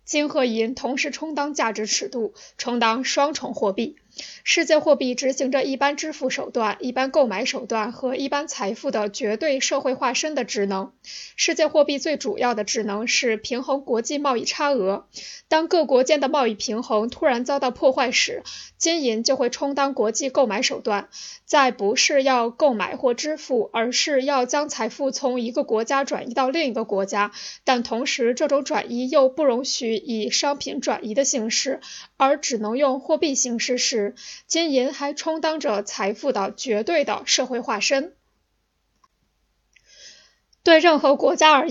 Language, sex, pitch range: Chinese, female, 240-290 Hz